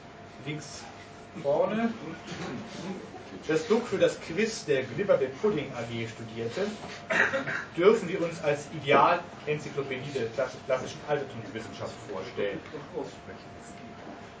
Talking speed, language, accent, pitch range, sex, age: 90 wpm, German, German, 135-185 Hz, male, 30-49